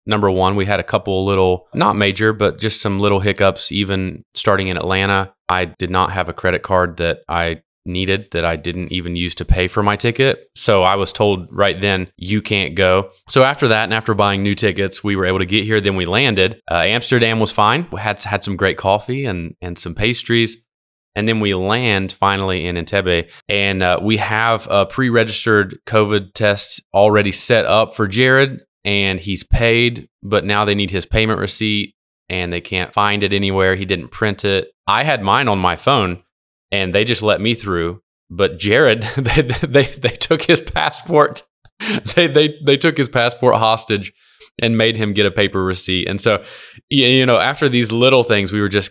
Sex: male